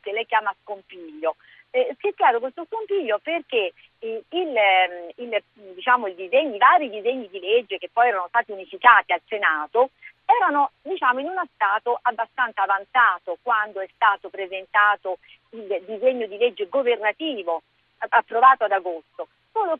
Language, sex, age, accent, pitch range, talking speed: Italian, female, 40-59, native, 205-295 Hz, 145 wpm